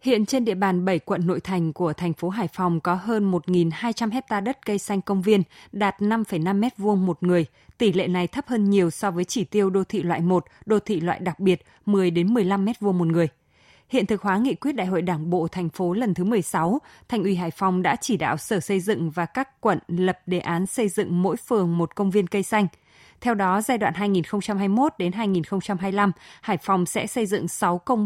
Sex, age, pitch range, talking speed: female, 20-39, 180-215 Hz, 220 wpm